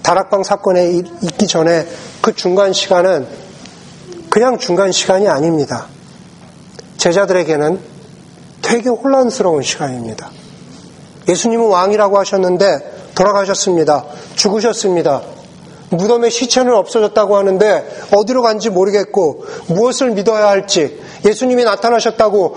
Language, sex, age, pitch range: Korean, male, 40-59, 175-230 Hz